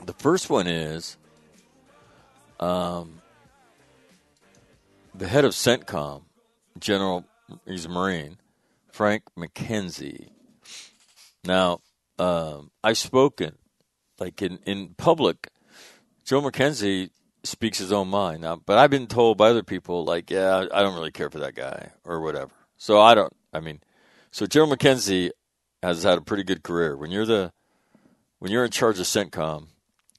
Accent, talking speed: American, 140 wpm